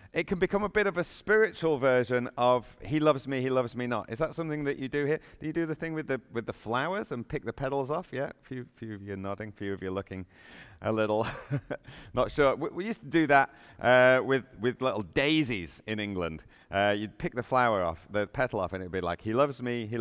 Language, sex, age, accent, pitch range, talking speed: English, male, 40-59, British, 110-175 Hz, 260 wpm